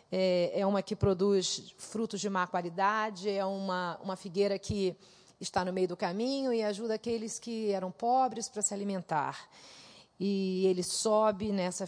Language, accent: Portuguese, Brazilian